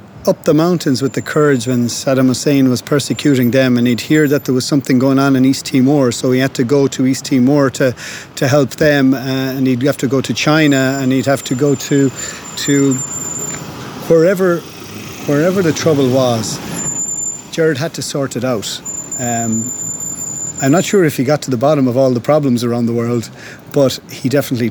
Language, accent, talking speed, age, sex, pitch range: English, Irish, 200 wpm, 40-59, male, 120-140 Hz